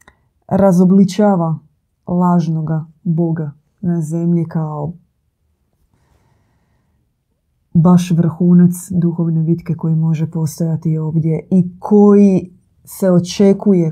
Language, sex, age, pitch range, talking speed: Croatian, female, 20-39, 160-185 Hz, 80 wpm